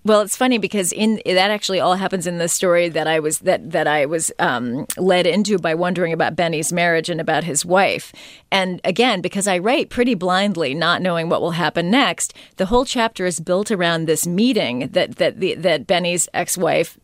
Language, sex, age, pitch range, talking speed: English, female, 40-59, 175-220 Hz, 205 wpm